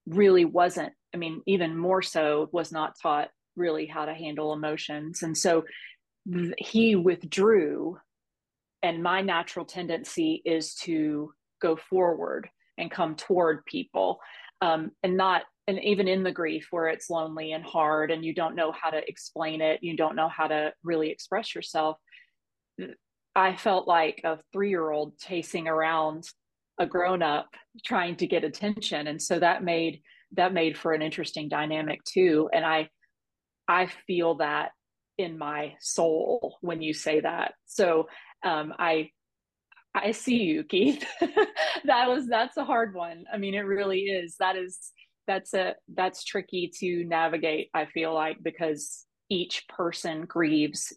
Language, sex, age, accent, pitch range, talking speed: English, female, 30-49, American, 160-190 Hz, 150 wpm